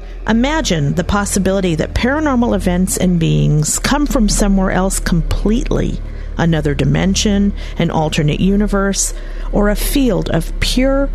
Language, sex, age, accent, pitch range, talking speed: English, female, 50-69, American, 165-210 Hz, 125 wpm